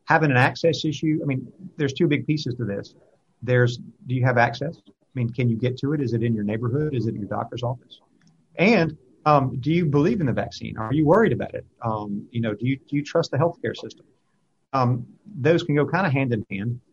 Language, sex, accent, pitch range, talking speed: English, male, American, 115-135 Hz, 240 wpm